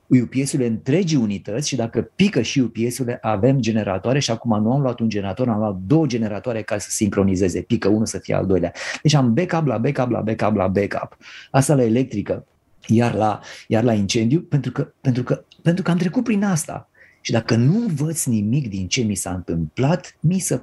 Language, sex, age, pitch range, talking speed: Romanian, male, 30-49, 105-150 Hz, 205 wpm